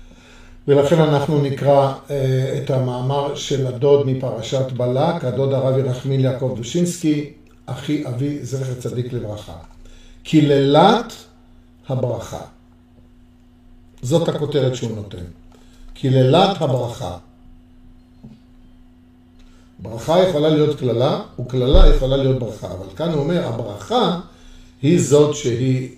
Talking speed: 100 wpm